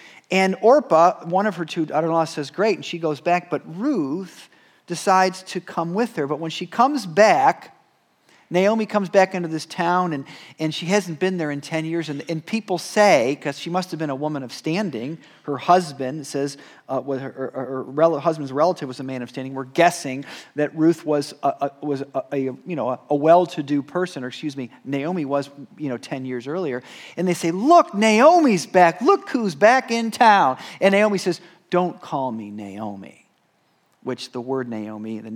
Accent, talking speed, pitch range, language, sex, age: American, 200 wpm, 130-175 Hz, English, male, 40-59